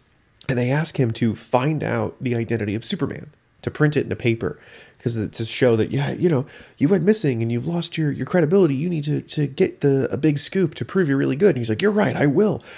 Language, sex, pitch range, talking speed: English, male, 105-150 Hz, 255 wpm